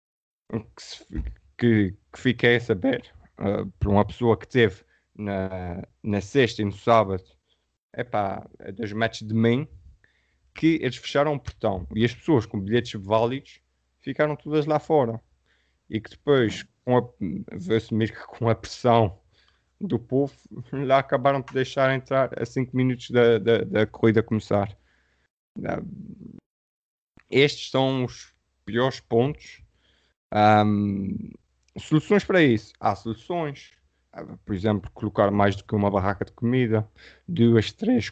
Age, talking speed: 20-39, 125 wpm